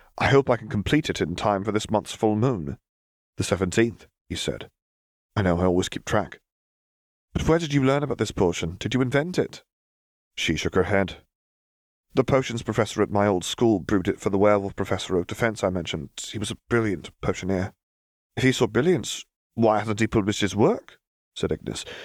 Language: English